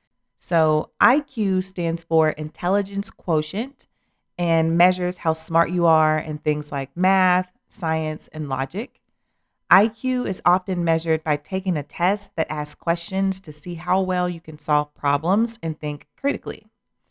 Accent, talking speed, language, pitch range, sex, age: American, 145 wpm, English, 155-195 Hz, female, 40-59